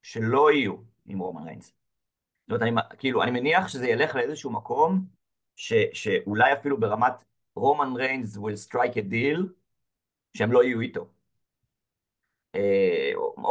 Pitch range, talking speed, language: 110-145 Hz, 130 wpm, English